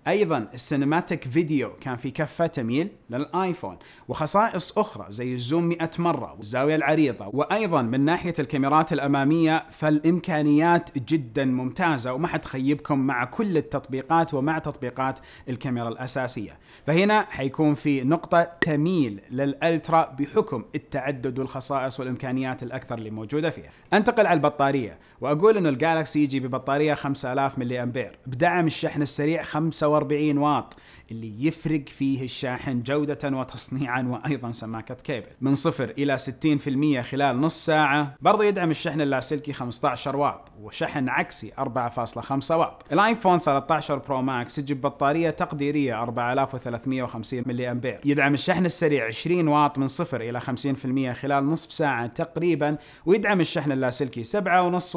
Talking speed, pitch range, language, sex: 130 wpm, 130-160 Hz, Arabic, male